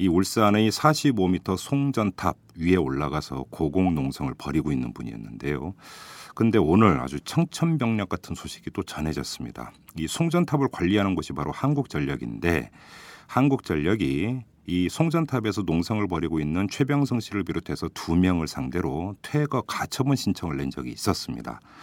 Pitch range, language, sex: 85-125 Hz, Korean, male